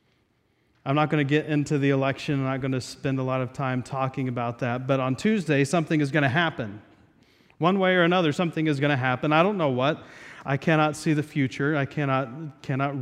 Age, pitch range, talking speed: 30-49, 150-200 Hz, 225 wpm